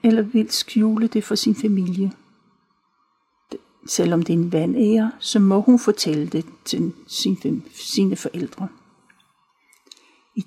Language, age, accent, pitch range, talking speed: Danish, 60-79, native, 195-240 Hz, 125 wpm